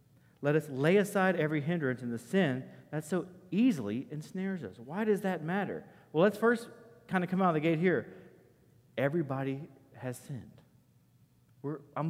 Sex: male